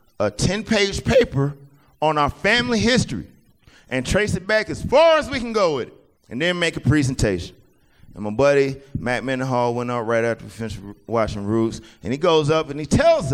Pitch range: 140-210 Hz